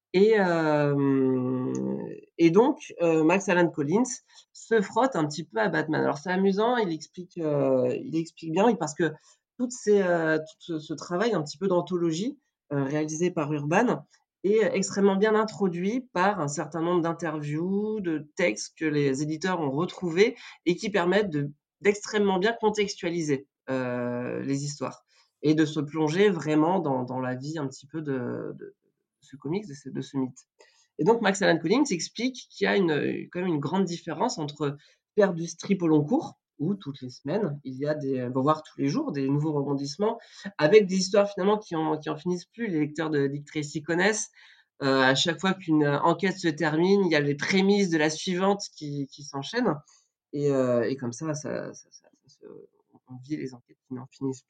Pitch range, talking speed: 145-195 Hz, 195 wpm